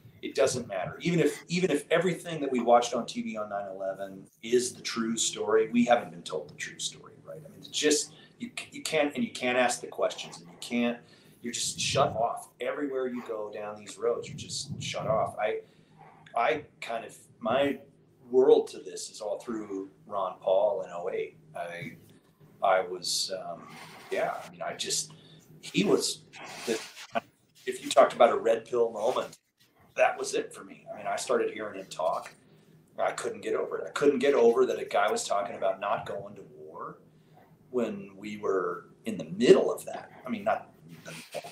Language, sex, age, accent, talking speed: English, male, 30-49, American, 195 wpm